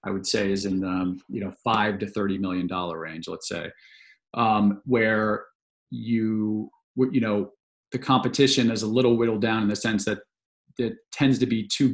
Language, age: English, 40-59